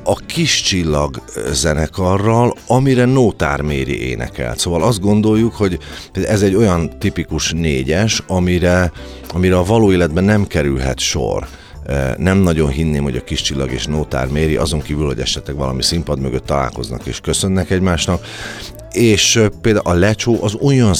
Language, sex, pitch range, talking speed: Hungarian, male, 75-105 Hz, 150 wpm